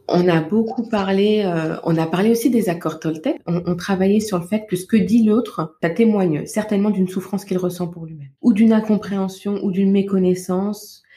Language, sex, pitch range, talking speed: French, female, 170-205 Hz, 205 wpm